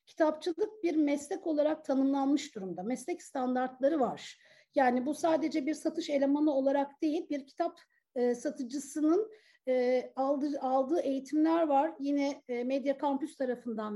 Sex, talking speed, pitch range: female, 135 wpm, 275-340 Hz